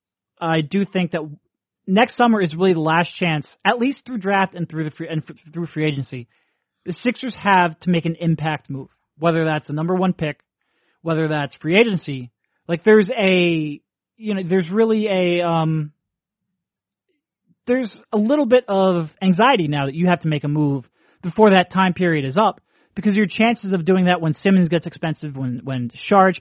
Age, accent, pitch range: 30-49, American, 150-195 Hz